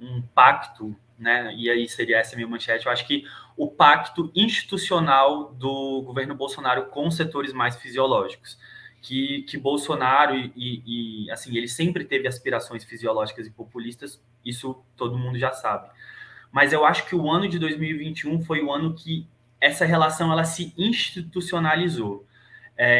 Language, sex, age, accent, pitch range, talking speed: Portuguese, male, 20-39, Brazilian, 120-150 Hz, 150 wpm